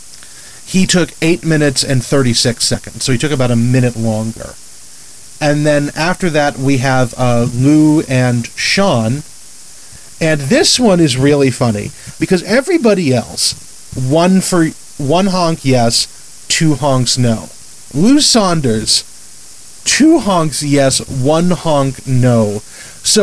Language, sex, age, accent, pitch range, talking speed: English, male, 40-59, American, 125-170 Hz, 130 wpm